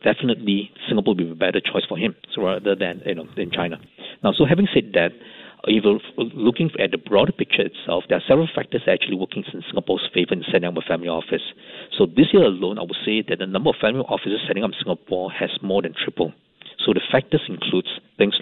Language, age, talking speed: English, 50-69, 230 wpm